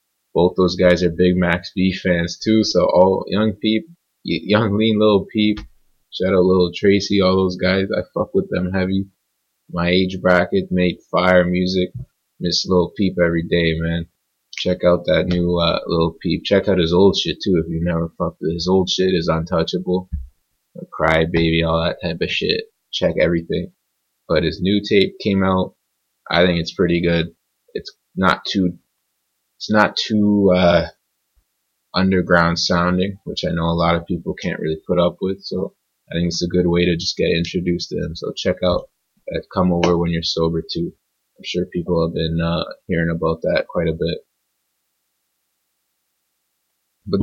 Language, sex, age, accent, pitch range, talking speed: English, male, 20-39, American, 85-100 Hz, 180 wpm